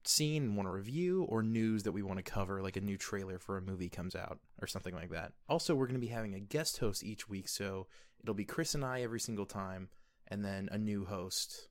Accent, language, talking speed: American, English, 255 wpm